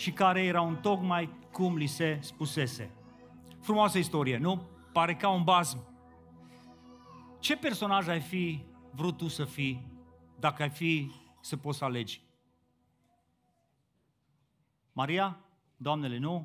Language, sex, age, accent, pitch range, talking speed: Romanian, male, 40-59, native, 145-195 Hz, 125 wpm